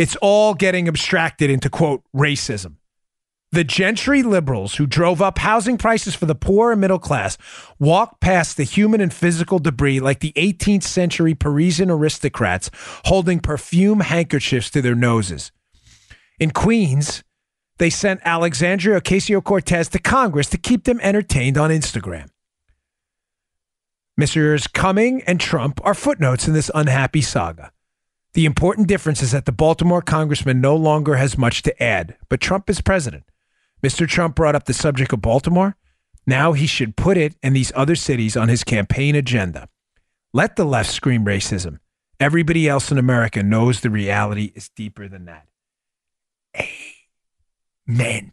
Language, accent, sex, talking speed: English, American, male, 150 wpm